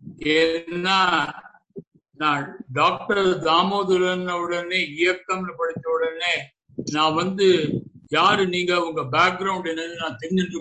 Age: 60-79